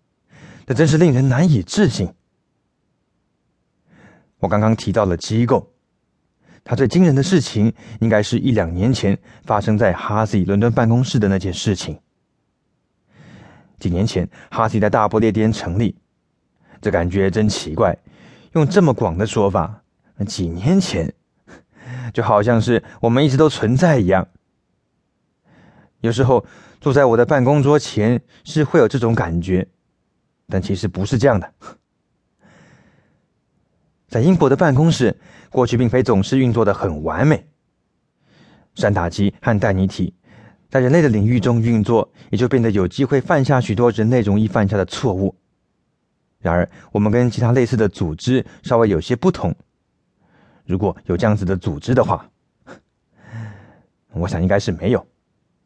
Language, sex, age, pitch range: English, male, 20-39, 100-130 Hz